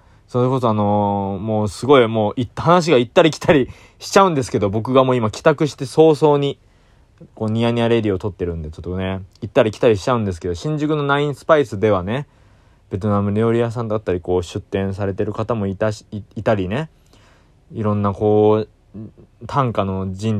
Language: Japanese